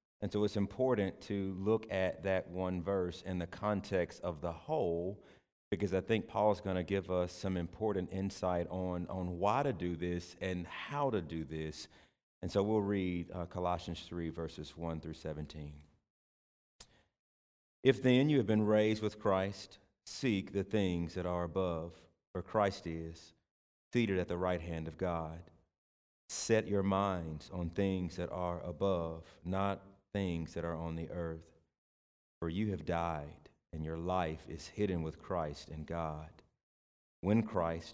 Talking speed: 165 wpm